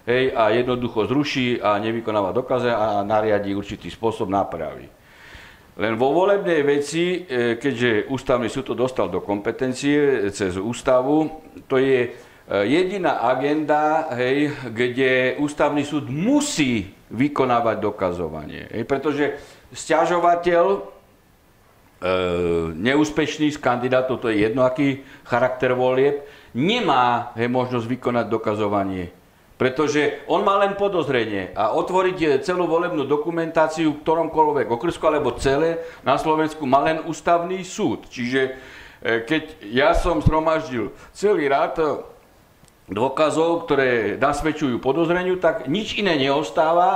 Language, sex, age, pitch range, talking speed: Slovak, male, 60-79, 120-160 Hz, 110 wpm